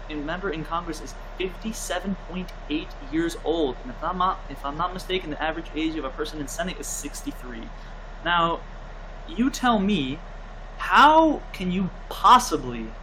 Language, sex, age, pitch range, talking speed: English, male, 20-39, 155-220 Hz, 155 wpm